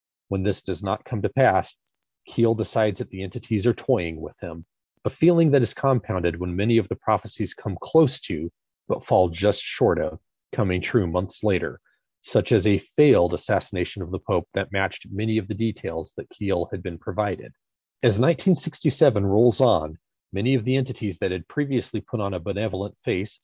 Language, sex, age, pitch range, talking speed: English, male, 30-49, 95-120 Hz, 185 wpm